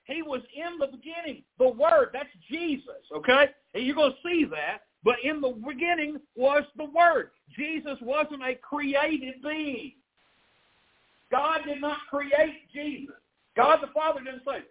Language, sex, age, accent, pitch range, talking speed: English, male, 50-69, American, 255-305 Hz, 150 wpm